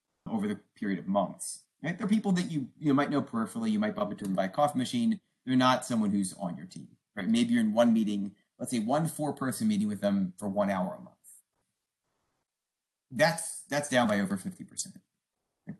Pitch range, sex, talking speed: 140-220 Hz, male, 210 wpm